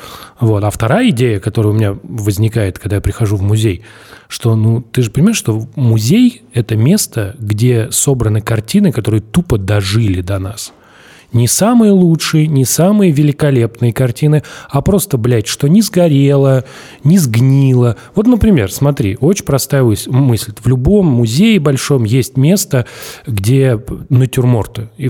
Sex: male